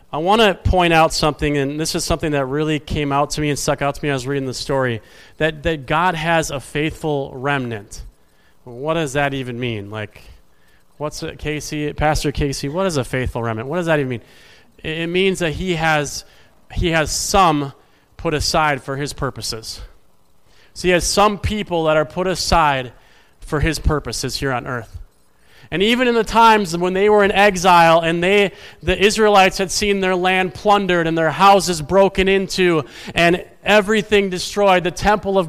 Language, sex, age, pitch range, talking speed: English, male, 30-49, 145-200 Hz, 190 wpm